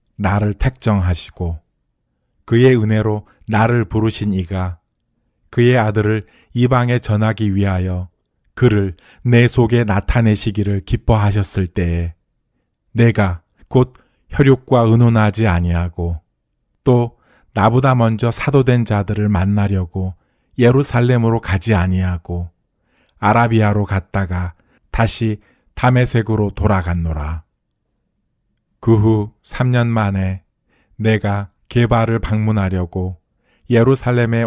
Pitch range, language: 90-115 Hz, Korean